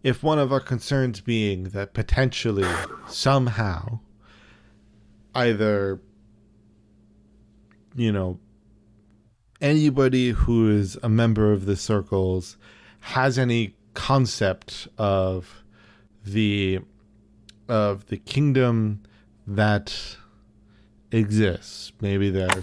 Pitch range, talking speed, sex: 100-115 Hz, 90 wpm, male